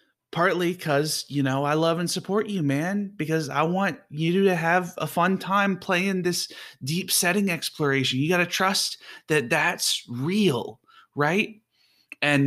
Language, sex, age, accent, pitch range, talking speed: English, male, 20-39, American, 115-170 Hz, 160 wpm